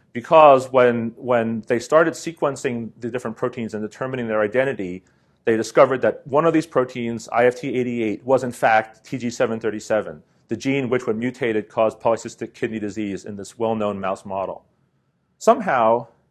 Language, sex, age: English, male, 40-59